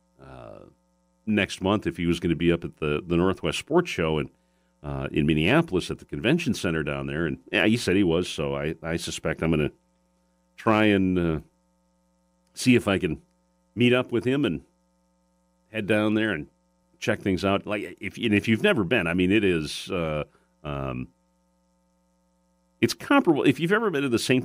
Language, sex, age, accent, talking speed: English, male, 40-59, American, 190 wpm